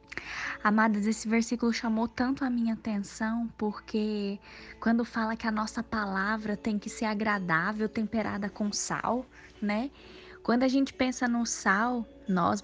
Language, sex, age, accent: Portuguese, female, 10-29, Brazilian